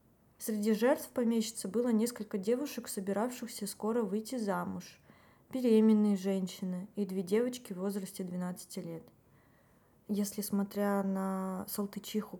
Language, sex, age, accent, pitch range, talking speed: Russian, female, 20-39, native, 185-215 Hz, 110 wpm